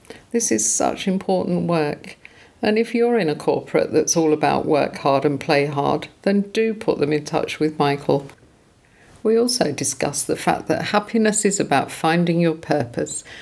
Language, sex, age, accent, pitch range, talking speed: English, female, 50-69, British, 150-195 Hz, 175 wpm